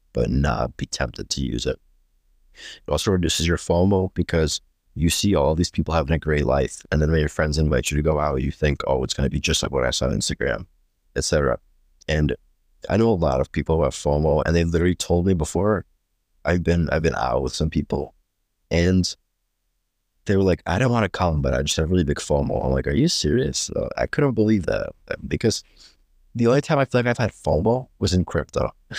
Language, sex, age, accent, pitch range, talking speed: English, male, 30-49, American, 75-90 Hz, 230 wpm